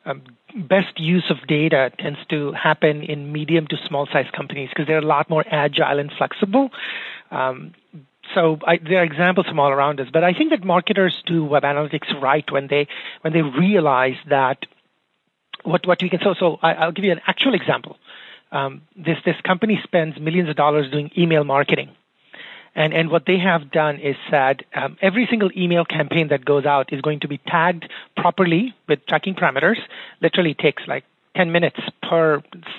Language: English